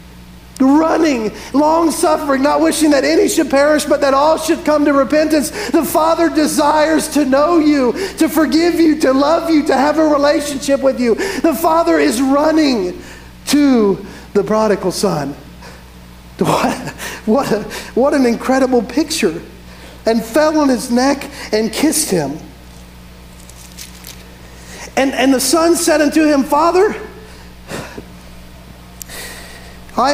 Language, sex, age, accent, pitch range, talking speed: English, male, 50-69, American, 205-285 Hz, 125 wpm